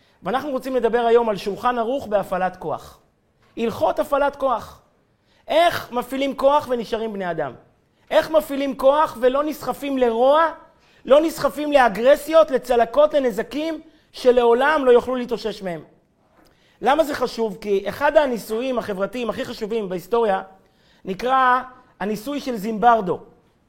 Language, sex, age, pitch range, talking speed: Hebrew, male, 30-49, 220-280 Hz, 120 wpm